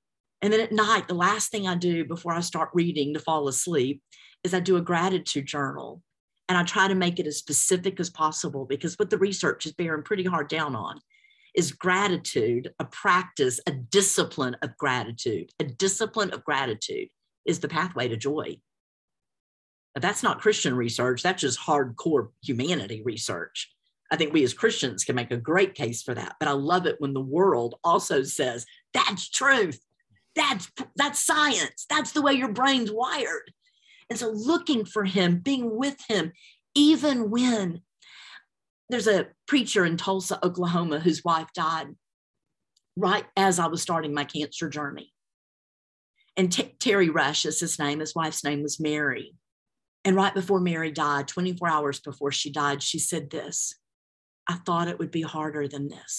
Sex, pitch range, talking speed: female, 145-200 Hz, 170 wpm